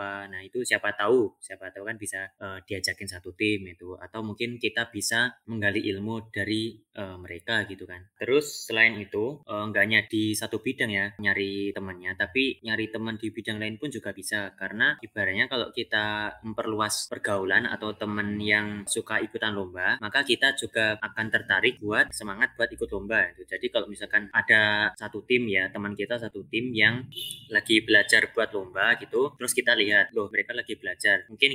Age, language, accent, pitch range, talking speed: 20-39, Indonesian, native, 100-115 Hz, 175 wpm